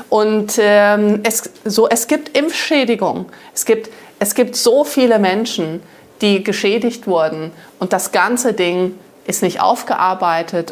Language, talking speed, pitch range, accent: German, 135 wpm, 180-235 Hz, German